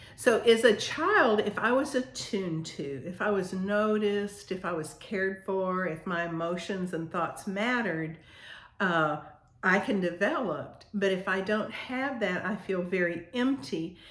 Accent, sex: American, female